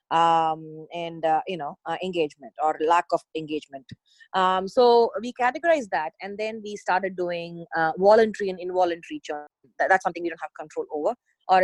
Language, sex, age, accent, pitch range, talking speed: English, female, 30-49, Indian, 160-195 Hz, 175 wpm